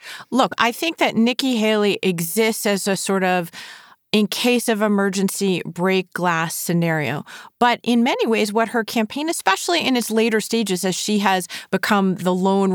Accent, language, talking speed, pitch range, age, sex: American, English, 170 wpm, 185-225 Hz, 30-49, female